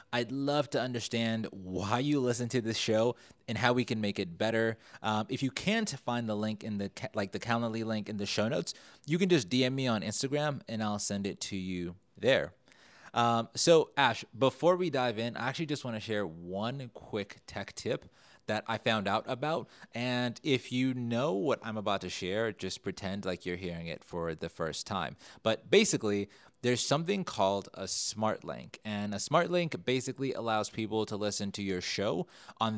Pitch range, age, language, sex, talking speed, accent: 100-125 Hz, 30-49, English, male, 200 wpm, American